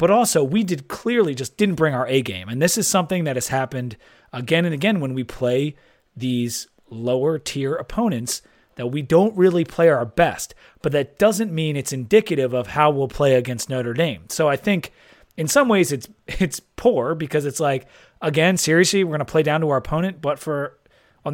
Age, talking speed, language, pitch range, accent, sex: 30-49, 205 wpm, English, 125-170 Hz, American, male